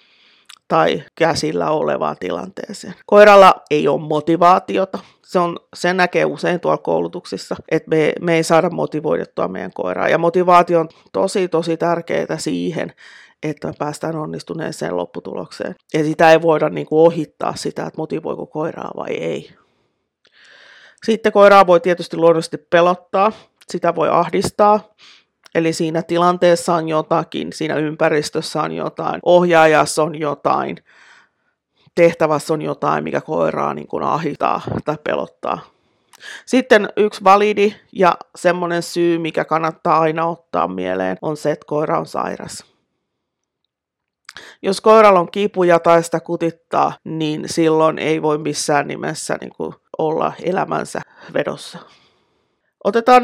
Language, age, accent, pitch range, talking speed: Finnish, 30-49, native, 155-185 Hz, 125 wpm